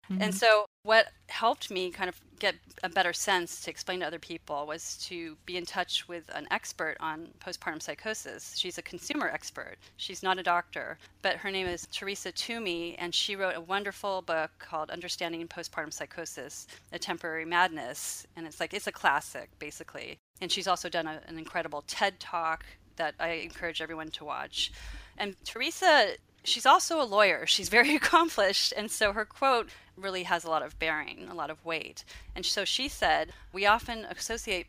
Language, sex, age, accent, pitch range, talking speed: English, female, 30-49, American, 170-215 Hz, 185 wpm